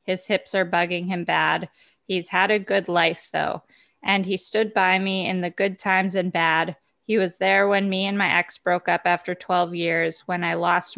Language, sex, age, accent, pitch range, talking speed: English, female, 20-39, American, 175-195 Hz, 215 wpm